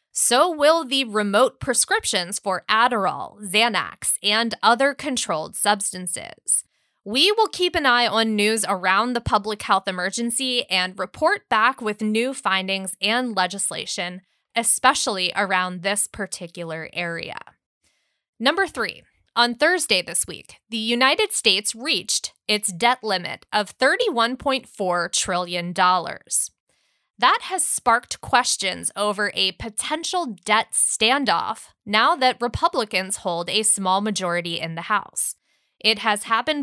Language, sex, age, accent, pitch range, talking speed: English, female, 20-39, American, 190-255 Hz, 125 wpm